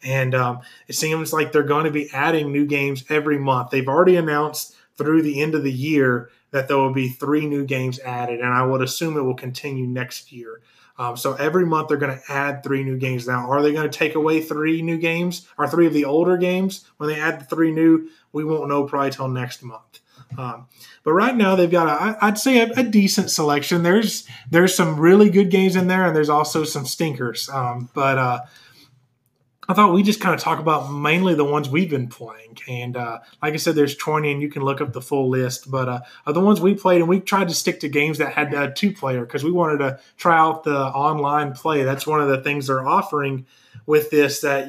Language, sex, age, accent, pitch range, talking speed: English, male, 20-39, American, 135-165 Hz, 235 wpm